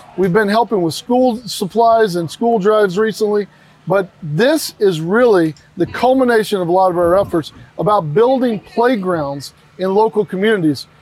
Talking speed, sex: 150 wpm, male